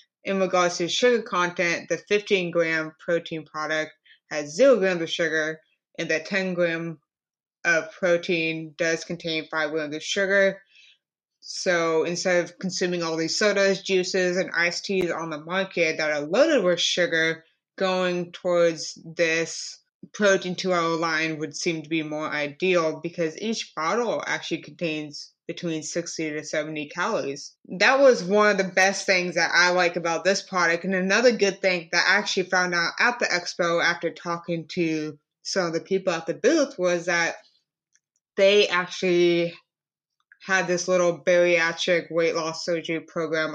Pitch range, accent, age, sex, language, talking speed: 160-185 Hz, American, 20-39, female, English, 155 wpm